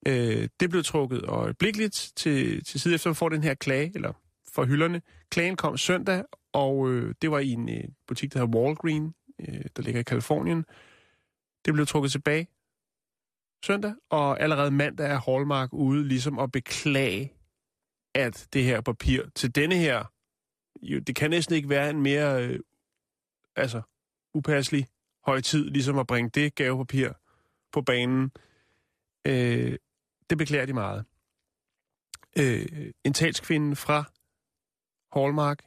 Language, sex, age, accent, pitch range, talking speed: Danish, male, 30-49, native, 125-155 Hz, 130 wpm